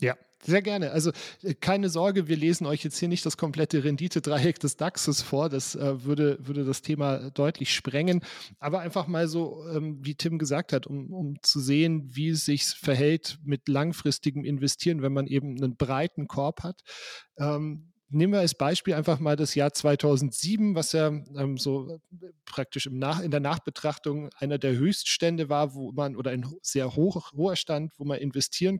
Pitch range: 140-170 Hz